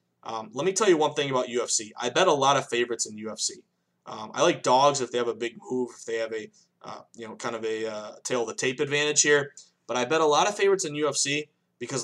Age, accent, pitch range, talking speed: 20-39, American, 115-145 Hz, 255 wpm